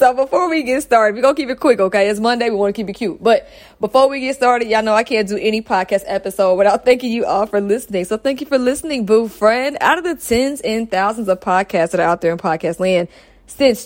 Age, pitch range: 20-39, 170-245 Hz